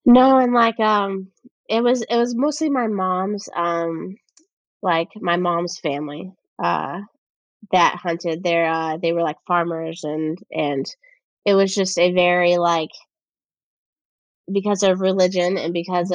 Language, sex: English, female